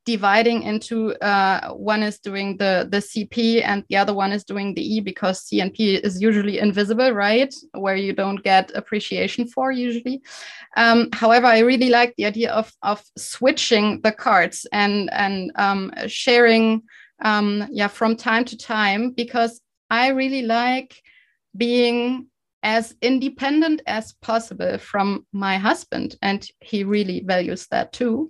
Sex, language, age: female, German, 20-39